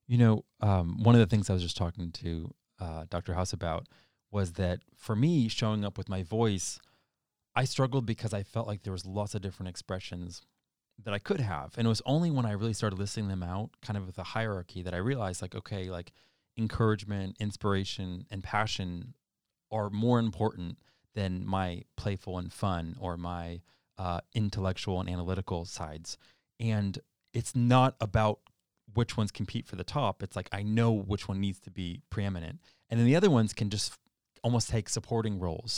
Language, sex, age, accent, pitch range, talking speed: English, male, 30-49, American, 95-120 Hz, 190 wpm